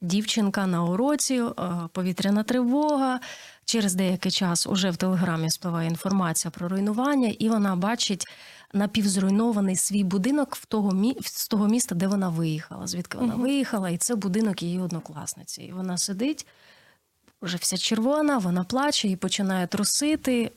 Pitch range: 180-230 Hz